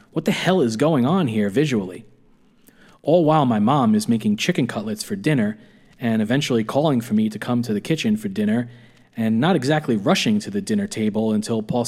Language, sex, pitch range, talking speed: English, male, 115-195 Hz, 200 wpm